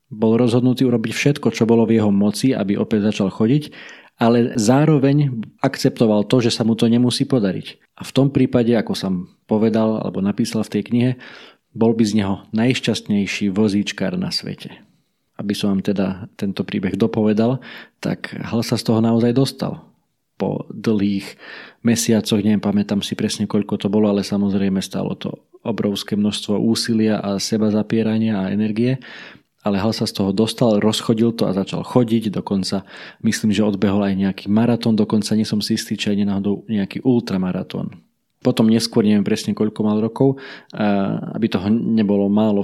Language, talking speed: Slovak, 160 wpm